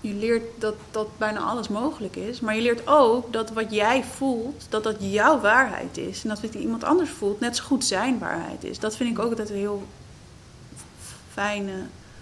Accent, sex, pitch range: Dutch, female, 210-250 Hz